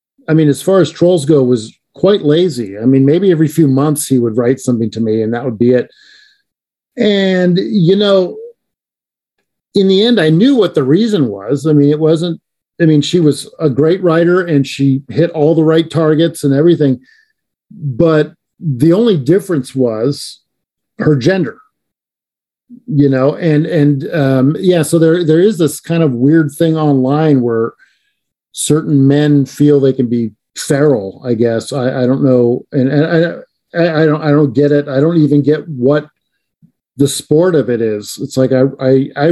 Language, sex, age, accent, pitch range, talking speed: English, male, 50-69, American, 140-190 Hz, 185 wpm